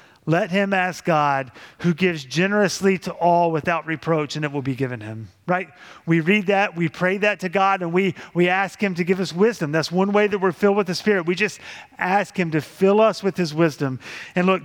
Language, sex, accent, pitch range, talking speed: English, male, American, 155-195 Hz, 230 wpm